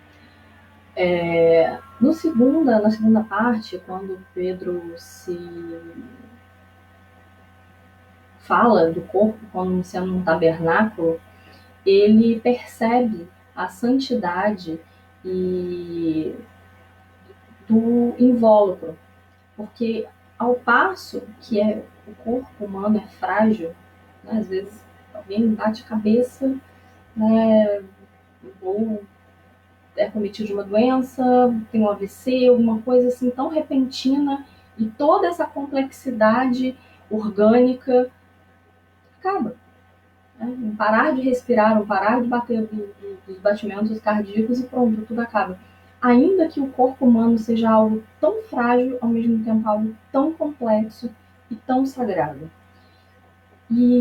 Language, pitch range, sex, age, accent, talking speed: Portuguese, 175-245 Hz, female, 20-39, Brazilian, 105 wpm